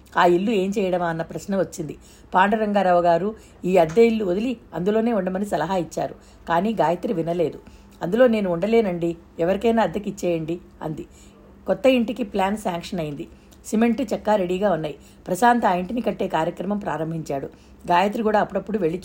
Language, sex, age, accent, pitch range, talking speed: Telugu, female, 50-69, native, 170-215 Hz, 135 wpm